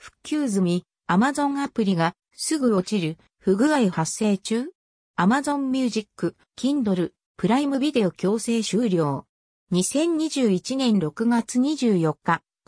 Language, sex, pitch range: Japanese, female, 185-255 Hz